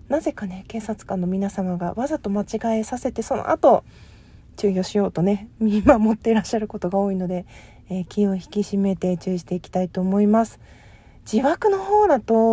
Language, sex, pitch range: Japanese, female, 195-260 Hz